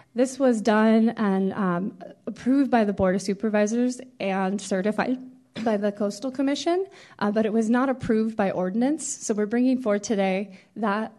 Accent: American